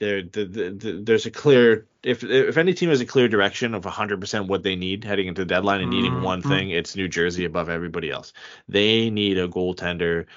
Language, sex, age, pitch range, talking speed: English, male, 20-39, 85-105 Hz, 225 wpm